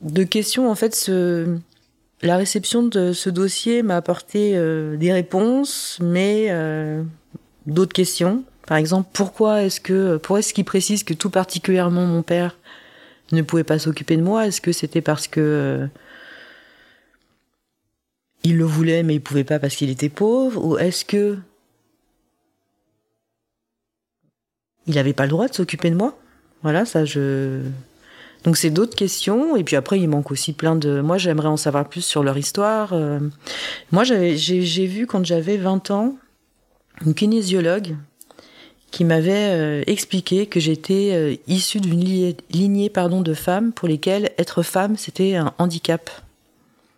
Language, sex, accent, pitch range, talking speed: French, female, French, 150-190 Hz, 155 wpm